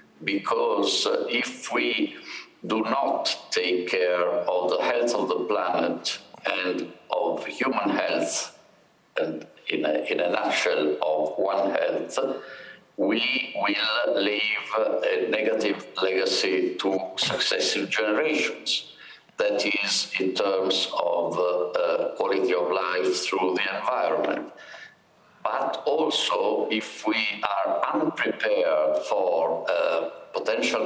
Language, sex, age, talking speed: English, male, 50-69, 110 wpm